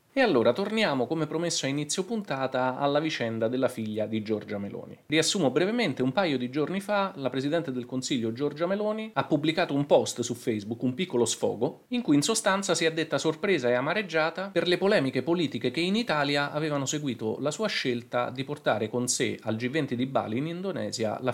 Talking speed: 195 wpm